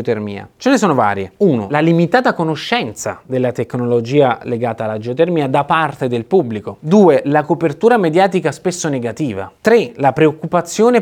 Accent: native